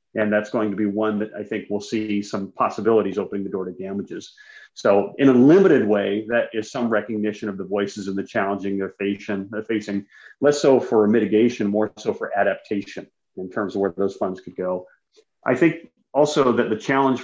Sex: male